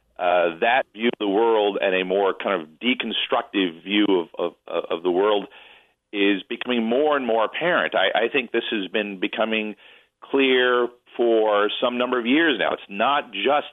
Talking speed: 180 wpm